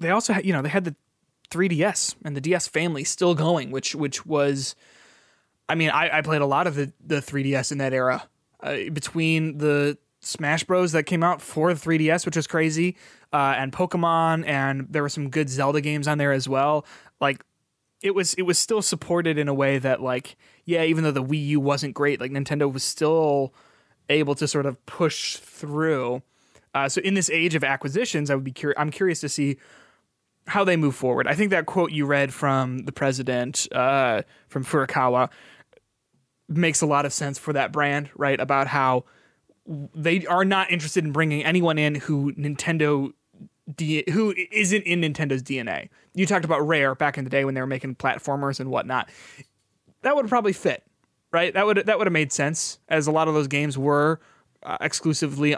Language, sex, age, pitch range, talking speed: English, male, 20-39, 140-165 Hz, 200 wpm